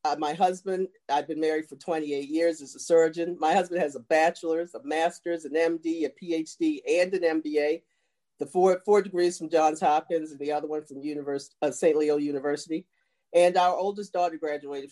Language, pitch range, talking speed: English, 150-220 Hz, 190 wpm